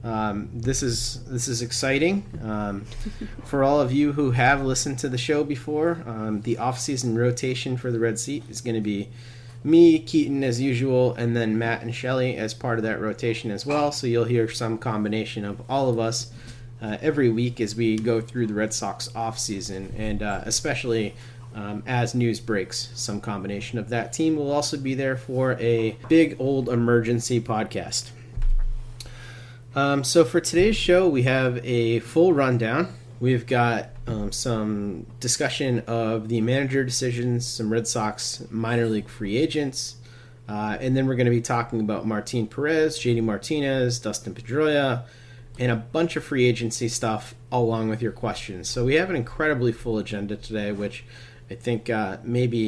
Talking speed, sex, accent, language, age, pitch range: 175 wpm, male, American, English, 30-49, 115-130 Hz